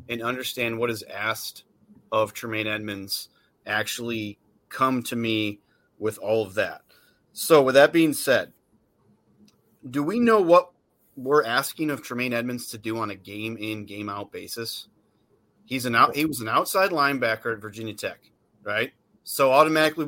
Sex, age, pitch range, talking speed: male, 30-49, 115-155 Hz, 160 wpm